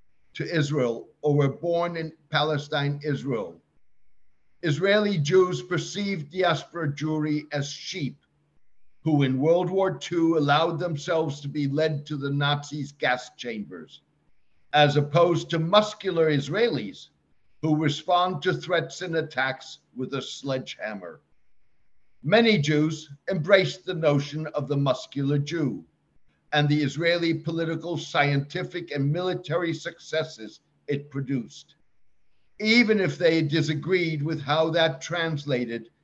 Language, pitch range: English, 145-170 Hz